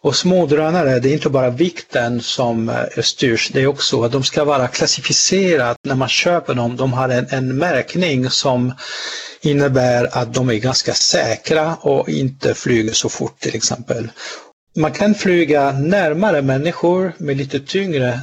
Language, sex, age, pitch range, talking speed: Swedish, male, 50-69, 120-155 Hz, 160 wpm